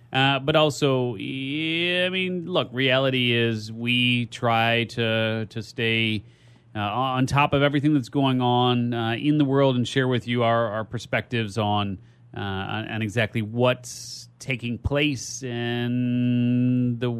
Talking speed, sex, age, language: 145 wpm, male, 30-49, English